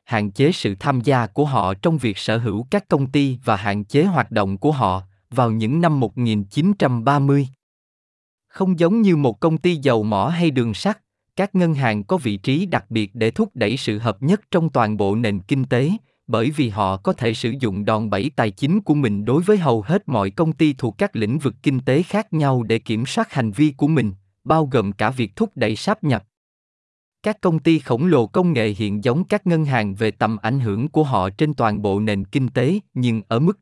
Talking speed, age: 225 wpm, 20-39